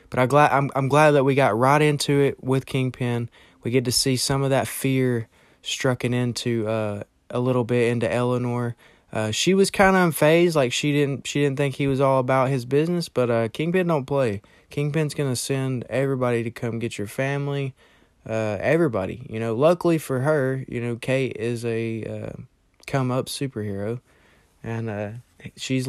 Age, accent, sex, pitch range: 20-39, American, male, 115-135 Hz